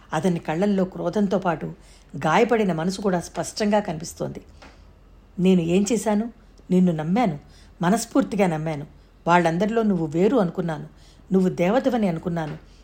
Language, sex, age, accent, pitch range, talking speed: Telugu, female, 60-79, native, 165-210 Hz, 110 wpm